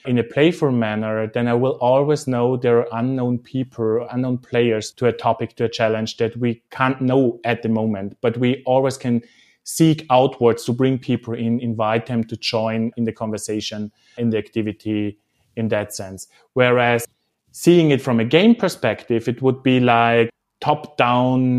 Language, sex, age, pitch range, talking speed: English, male, 30-49, 110-130 Hz, 175 wpm